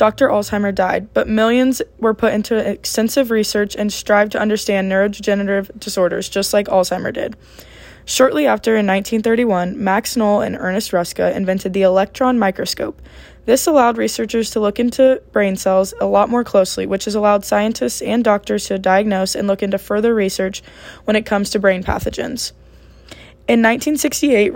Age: 20-39